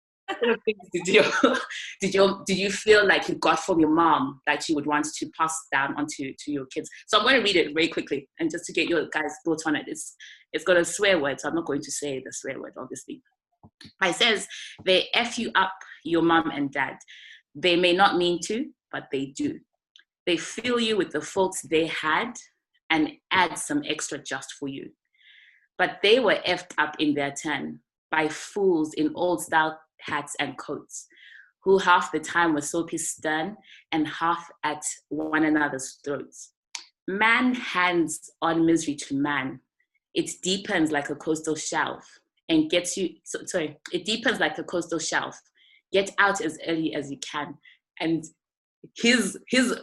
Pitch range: 150-195 Hz